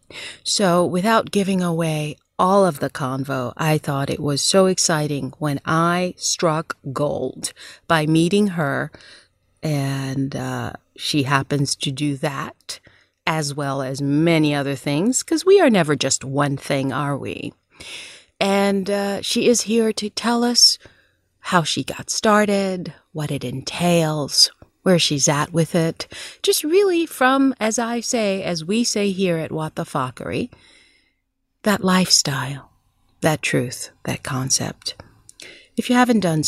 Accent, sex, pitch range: American, female, 140-200 Hz